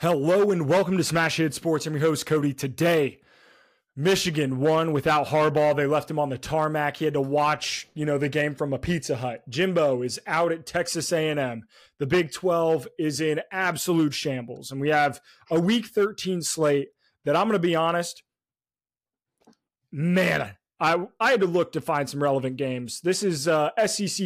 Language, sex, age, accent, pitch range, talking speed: English, male, 20-39, American, 145-180 Hz, 185 wpm